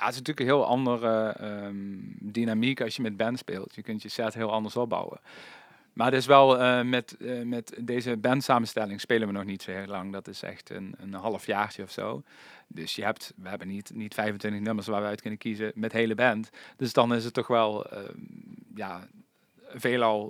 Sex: male